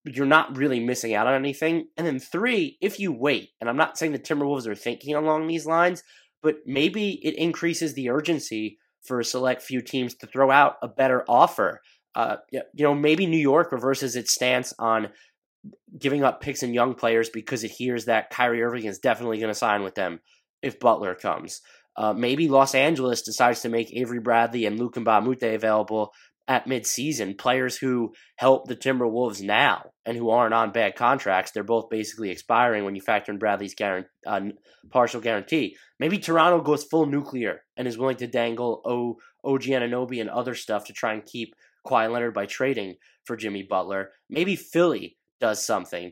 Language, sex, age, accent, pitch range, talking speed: English, male, 20-39, American, 110-140 Hz, 185 wpm